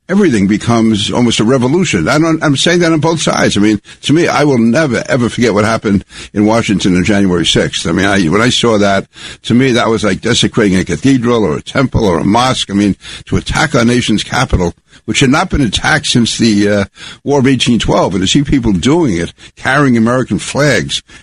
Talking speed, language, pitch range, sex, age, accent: 210 wpm, English, 105-130 Hz, male, 60-79, American